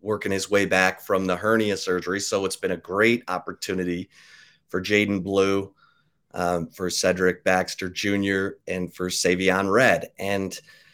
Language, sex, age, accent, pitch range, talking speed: English, male, 30-49, American, 90-110 Hz, 150 wpm